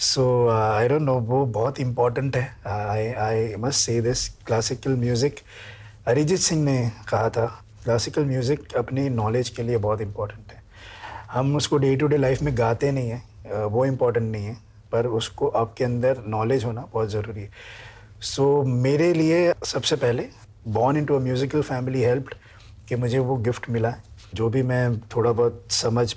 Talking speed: 155 wpm